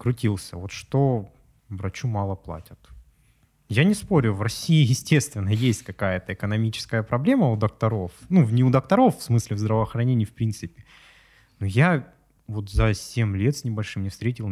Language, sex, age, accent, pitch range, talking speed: Russian, male, 20-39, native, 100-120 Hz, 155 wpm